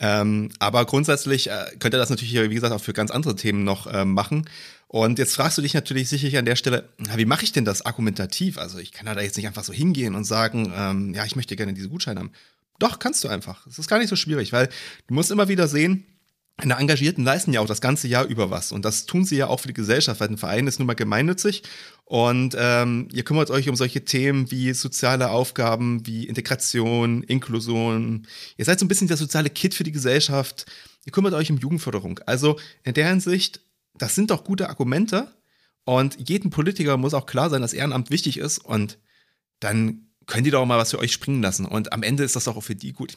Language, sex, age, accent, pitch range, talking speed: German, male, 30-49, German, 110-145 Hz, 235 wpm